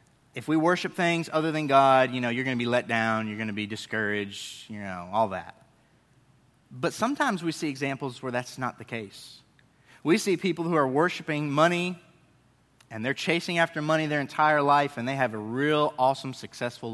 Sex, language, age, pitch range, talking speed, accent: male, English, 30-49, 115-150 Hz, 200 wpm, American